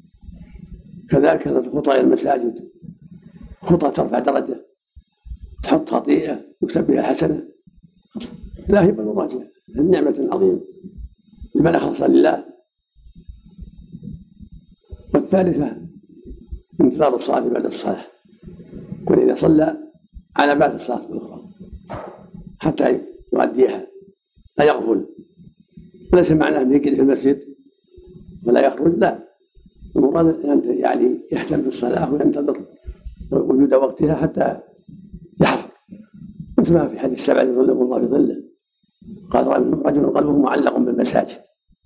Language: Arabic